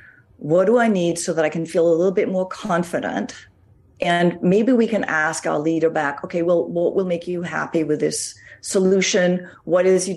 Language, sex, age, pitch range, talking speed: English, female, 40-59, 155-195 Hz, 205 wpm